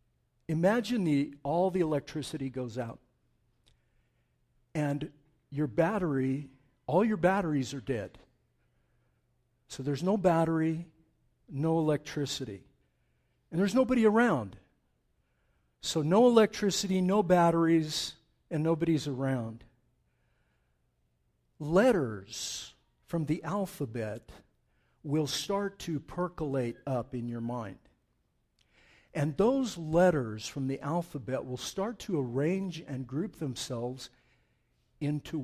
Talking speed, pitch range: 100 wpm, 125-170 Hz